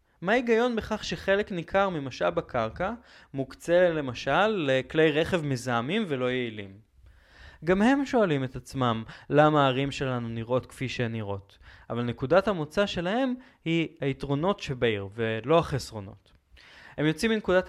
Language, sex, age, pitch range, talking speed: English, male, 20-39, 120-185 Hz, 125 wpm